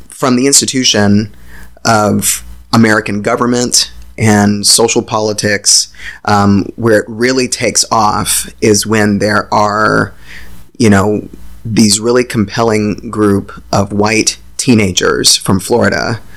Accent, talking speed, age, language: American, 110 wpm, 30-49, English